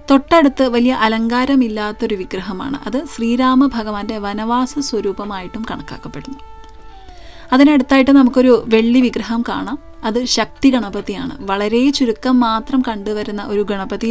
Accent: native